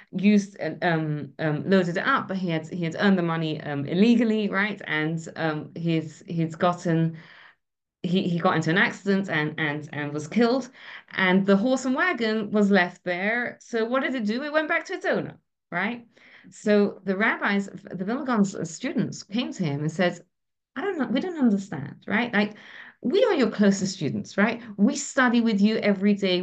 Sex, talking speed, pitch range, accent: female, 190 wpm, 170-235 Hz, British